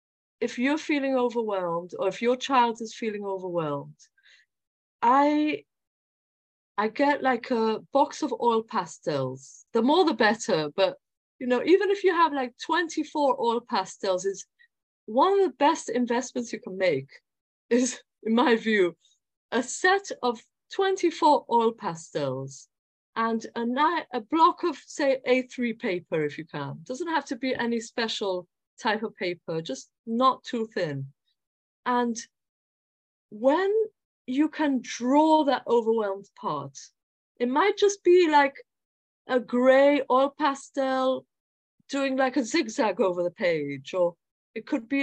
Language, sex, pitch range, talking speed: English, female, 215-285 Hz, 145 wpm